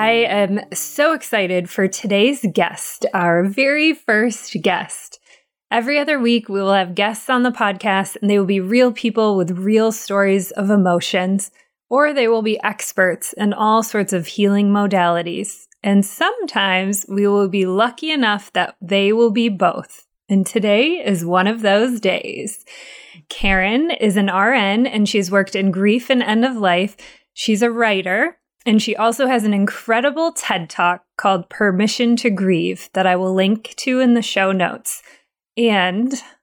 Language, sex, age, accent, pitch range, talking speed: English, female, 20-39, American, 195-235 Hz, 165 wpm